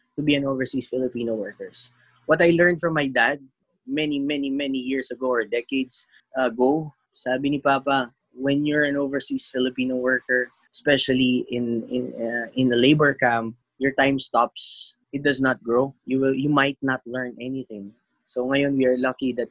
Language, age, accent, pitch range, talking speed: English, 20-39, Filipino, 125-145 Hz, 175 wpm